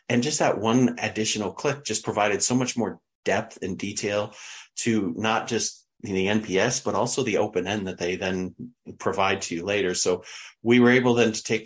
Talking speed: 195 wpm